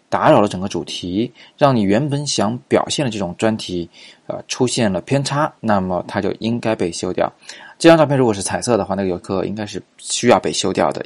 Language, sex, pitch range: Chinese, male, 95-120 Hz